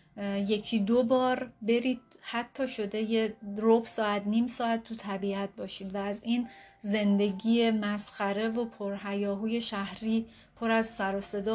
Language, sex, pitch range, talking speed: Persian, female, 205-235 Hz, 145 wpm